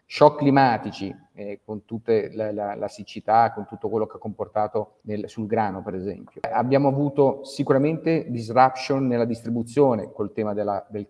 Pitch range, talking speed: 110-140 Hz, 160 wpm